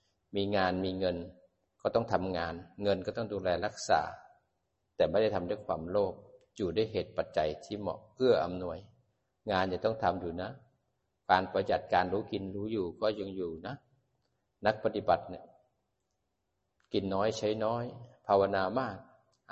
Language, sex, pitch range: Thai, male, 95-115 Hz